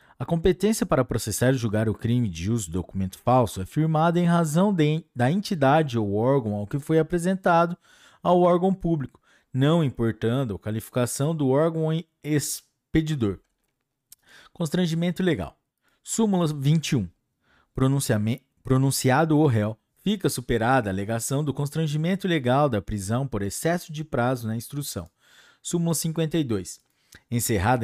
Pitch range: 115-165 Hz